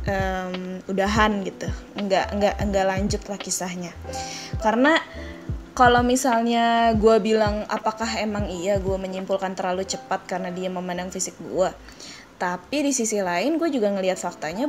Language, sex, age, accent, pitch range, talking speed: Indonesian, female, 20-39, native, 185-230 Hz, 140 wpm